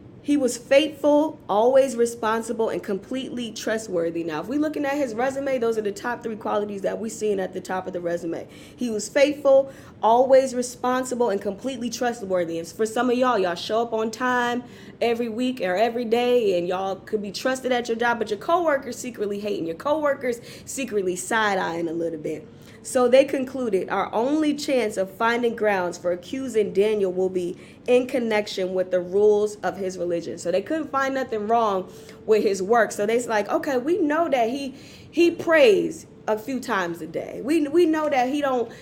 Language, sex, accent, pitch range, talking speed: English, female, American, 195-250 Hz, 195 wpm